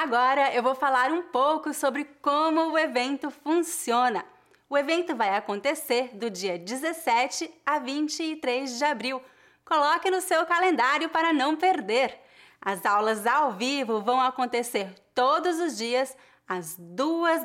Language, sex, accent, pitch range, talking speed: English, female, Brazilian, 225-310 Hz, 140 wpm